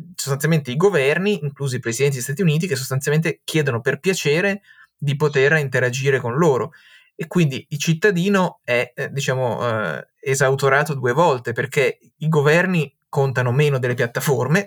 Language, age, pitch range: Italian, 20-39, 130-160 Hz